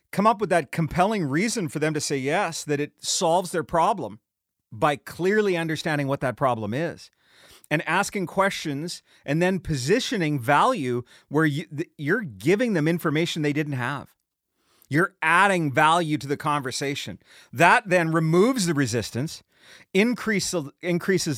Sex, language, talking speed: male, English, 140 wpm